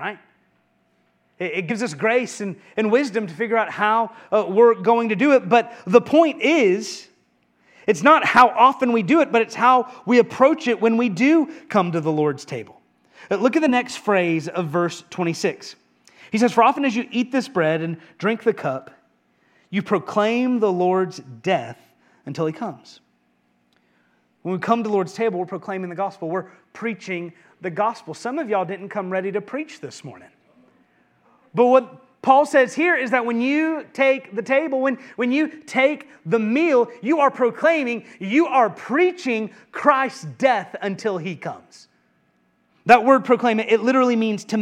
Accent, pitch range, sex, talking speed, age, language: American, 180-250 Hz, male, 180 wpm, 30-49, English